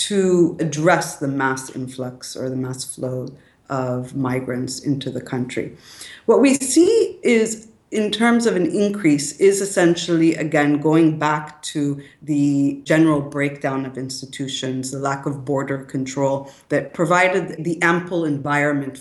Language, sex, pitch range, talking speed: English, female, 135-160 Hz, 140 wpm